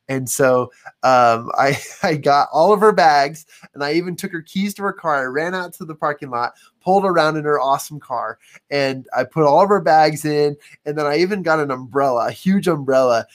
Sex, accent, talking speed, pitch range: male, American, 225 wpm, 135-175 Hz